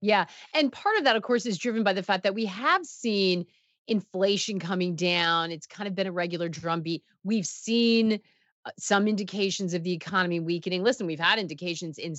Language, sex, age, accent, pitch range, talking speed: English, female, 30-49, American, 175-245 Hz, 190 wpm